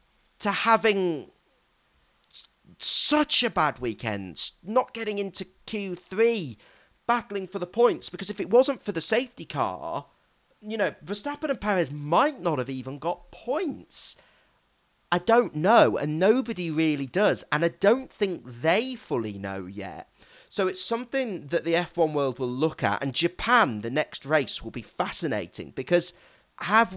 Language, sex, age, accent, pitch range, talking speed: English, male, 40-59, British, 135-205 Hz, 150 wpm